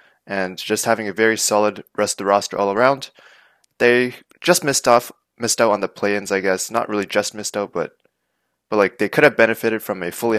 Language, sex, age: English, male, 20-39